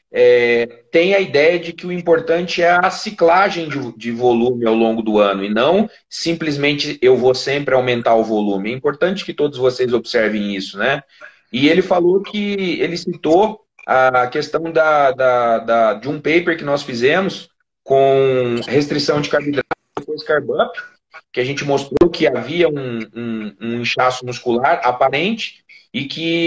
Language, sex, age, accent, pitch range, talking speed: Portuguese, male, 30-49, Brazilian, 120-165 Hz, 155 wpm